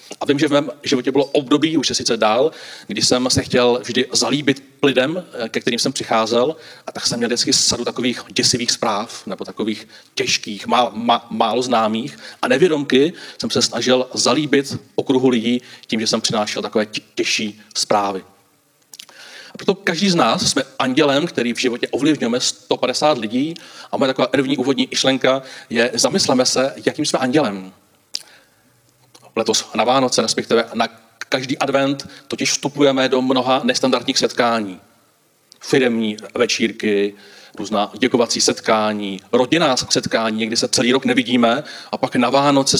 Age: 40-59